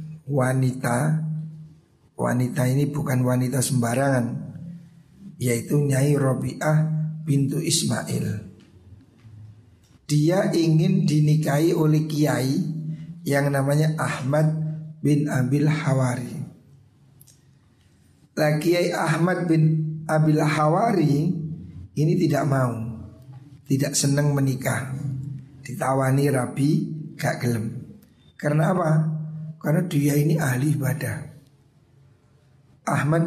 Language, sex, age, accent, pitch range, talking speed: Indonesian, male, 50-69, native, 135-160 Hz, 80 wpm